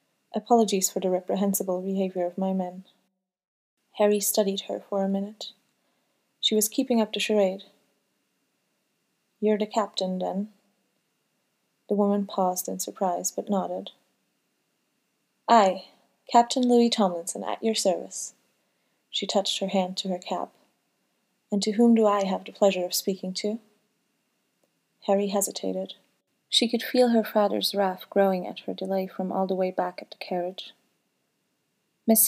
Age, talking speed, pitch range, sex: 30-49, 145 wpm, 185-215 Hz, female